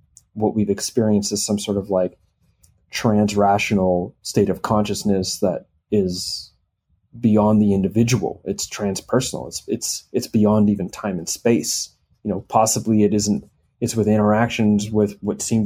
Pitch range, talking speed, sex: 100-120 Hz, 145 wpm, male